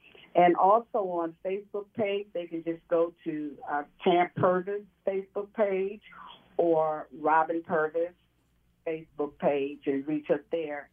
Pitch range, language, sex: 155-185 Hz, English, female